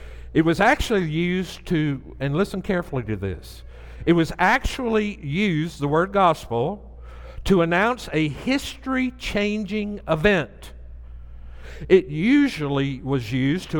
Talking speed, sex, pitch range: 115 wpm, male, 145-220 Hz